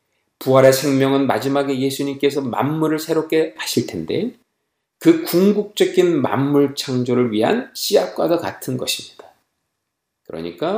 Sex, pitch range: male, 115-155 Hz